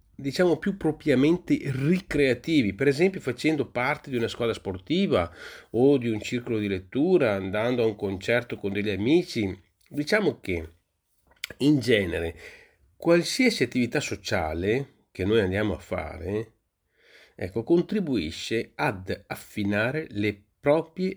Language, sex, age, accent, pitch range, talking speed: Italian, male, 40-59, native, 105-135 Hz, 120 wpm